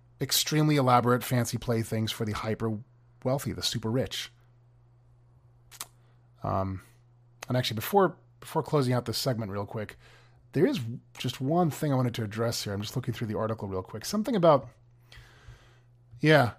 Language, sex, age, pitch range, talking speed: English, male, 30-49, 115-130 Hz, 155 wpm